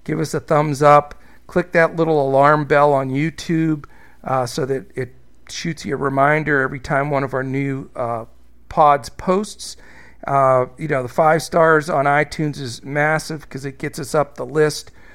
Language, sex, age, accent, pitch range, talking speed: English, male, 50-69, American, 140-170 Hz, 180 wpm